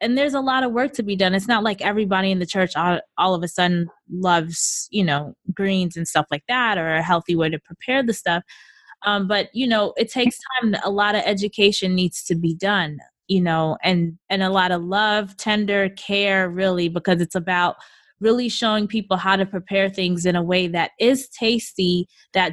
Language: English